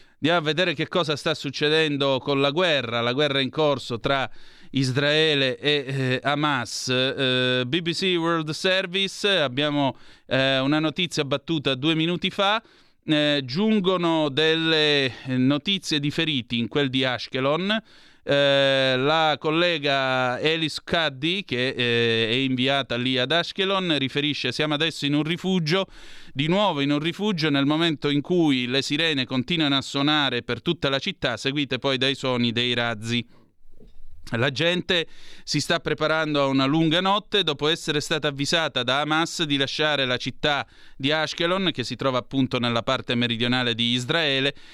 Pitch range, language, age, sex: 130-160 Hz, Italian, 30-49, male